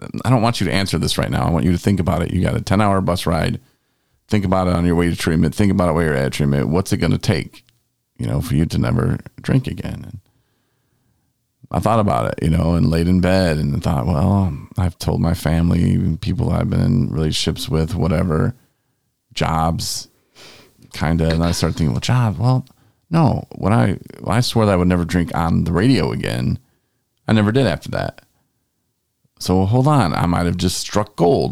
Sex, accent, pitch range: male, American, 85-125 Hz